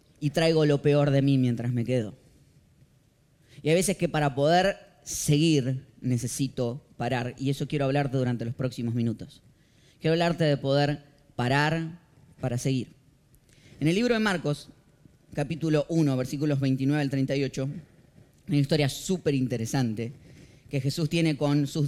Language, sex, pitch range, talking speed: Spanish, female, 140-210 Hz, 150 wpm